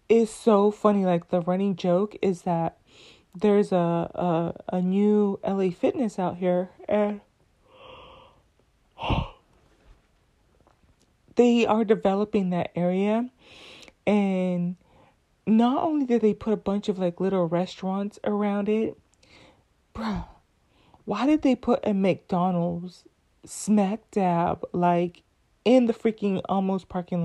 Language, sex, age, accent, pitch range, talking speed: English, female, 30-49, American, 180-235 Hz, 115 wpm